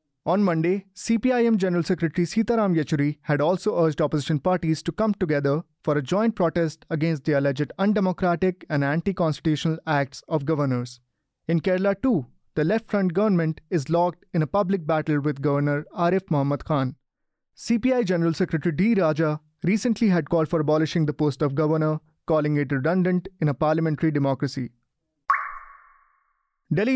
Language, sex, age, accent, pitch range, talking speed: English, male, 30-49, Indian, 150-190 Hz, 150 wpm